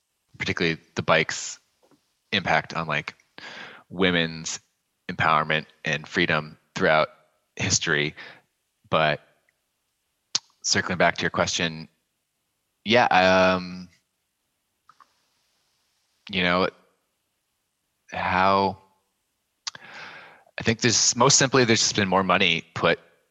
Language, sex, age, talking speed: English, male, 20-39, 90 wpm